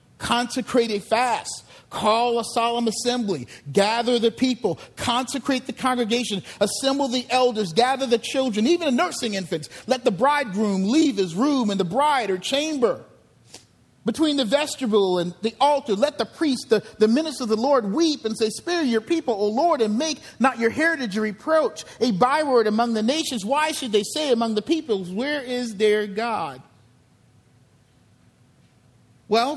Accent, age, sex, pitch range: American, 50-69, male, 210-265 Hz